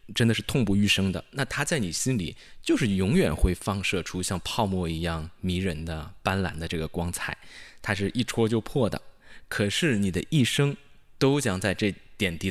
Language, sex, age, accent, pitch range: Chinese, male, 20-39, native, 90-120 Hz